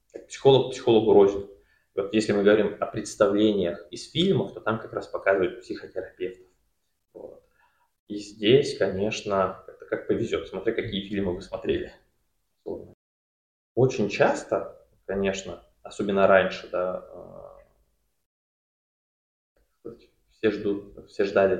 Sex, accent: male, native